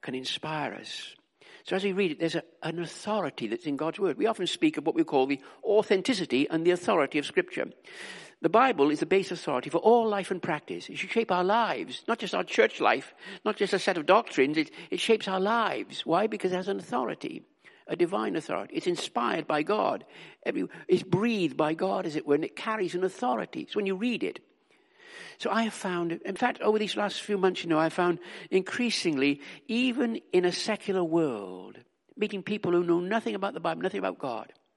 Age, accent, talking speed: 60-79, British, 215 wpm